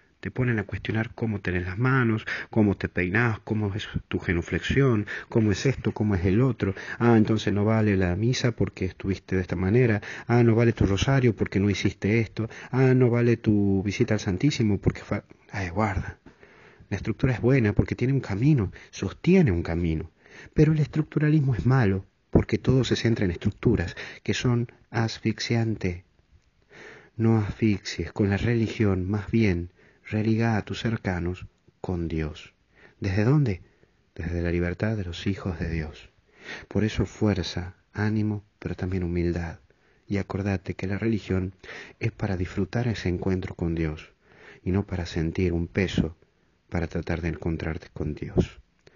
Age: 40-59